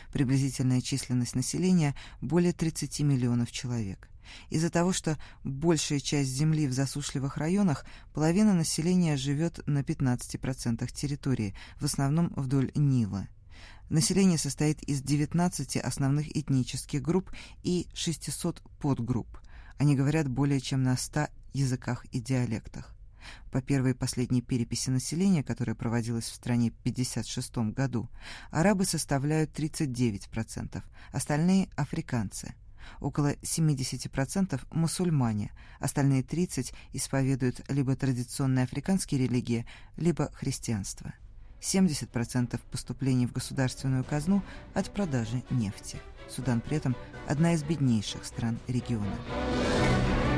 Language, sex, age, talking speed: Russian, female, 20-39, 110 wpm